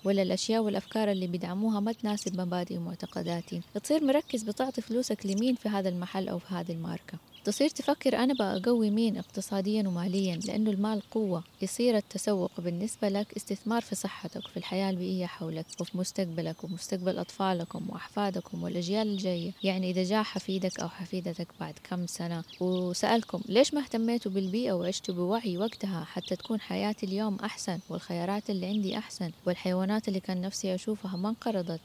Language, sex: Arabic, female